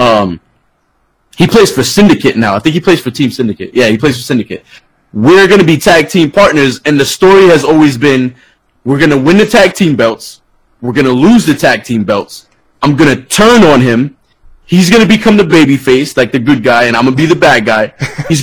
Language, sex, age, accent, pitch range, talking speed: English, male, 20-39, American, 125-180 Hz, 235 wpm